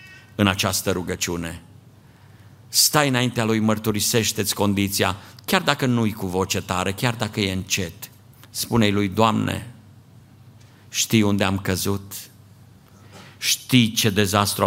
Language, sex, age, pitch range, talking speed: Romanian, male, 50-69, 95-115 Hz, 115 wpm